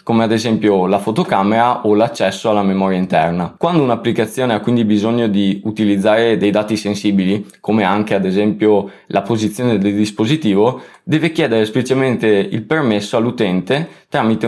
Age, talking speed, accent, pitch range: 20-39, 145 wpm, native, 100-125 Hz